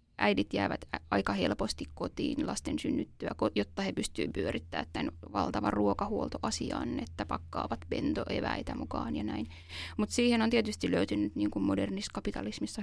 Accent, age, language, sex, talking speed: native, 20-39, Finnish, female, 130 wpm